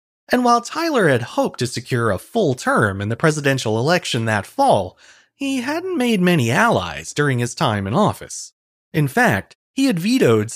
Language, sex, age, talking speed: English, male, 30-49, 175 wpm